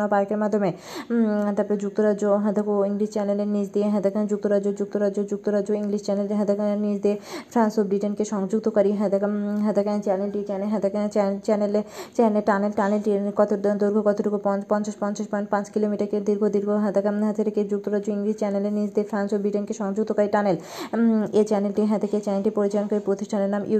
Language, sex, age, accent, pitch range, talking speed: Bengali, female, 20-39, native, 200-210 Hz, 40 wpm